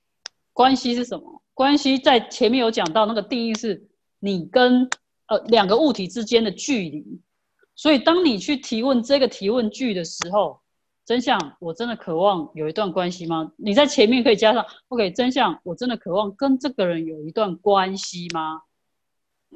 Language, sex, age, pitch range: Chinese, female, 30-49, 175-235 Hz